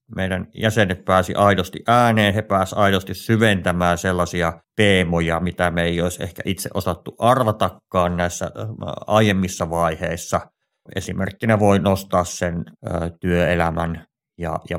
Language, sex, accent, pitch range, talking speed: Finnish, male, native, 90-100 Hz, 115 wpm